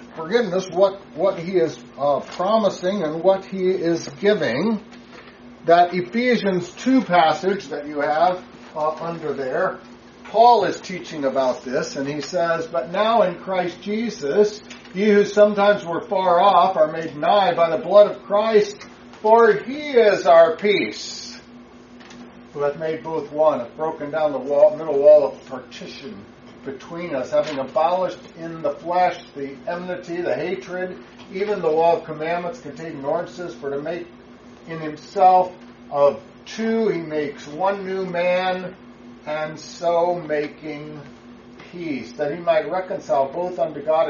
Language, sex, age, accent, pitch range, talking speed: English, male, 60-79, American, 150-200 Hz, 150 wpm